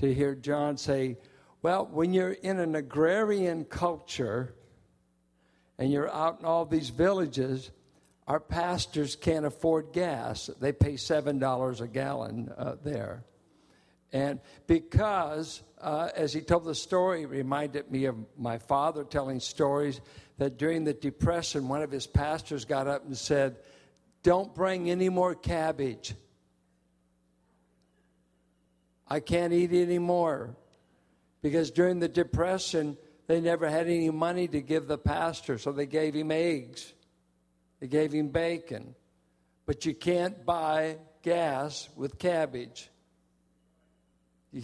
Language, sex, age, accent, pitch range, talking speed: English, male, 60-79, American, 125-160 Hz, 130 wpm